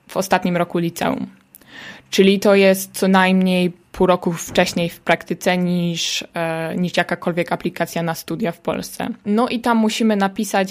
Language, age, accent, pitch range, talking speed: Polish, 20-39, native, 170-195 Hz, 150 wpm